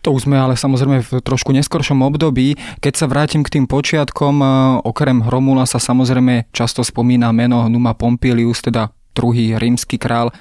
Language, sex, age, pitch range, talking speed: Slovak, male, 20-39, 120-135 Hz, 160 wpm